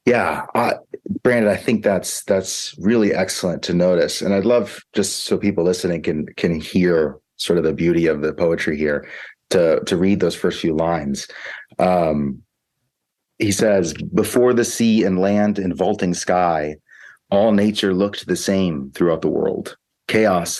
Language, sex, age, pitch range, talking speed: English, male, 30-49, 85-100 Hz, 165 wpm